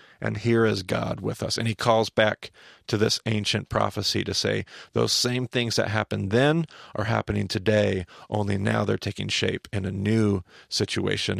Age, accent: 40-59, American